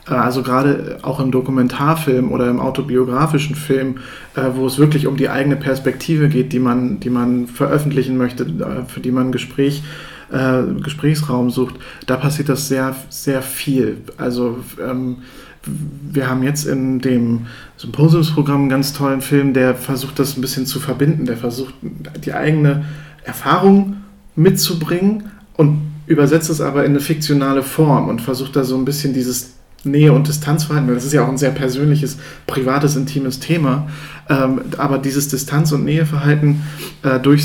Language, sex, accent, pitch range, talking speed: German, male, German, 130-150 Hz, 145 wpm